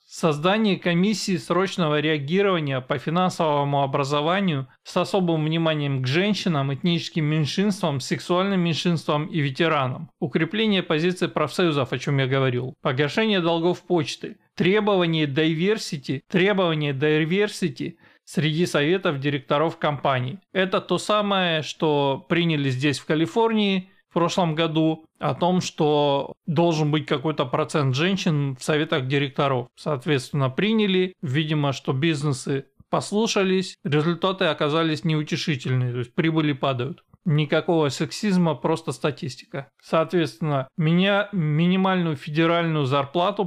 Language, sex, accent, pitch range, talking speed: Russian, male, native, 145-180 Hz, 110 wpm